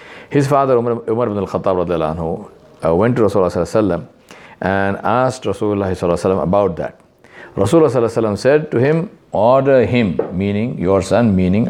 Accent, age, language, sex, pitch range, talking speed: Indian, 50-69, English, male, 95-125 Hz, 130 wpm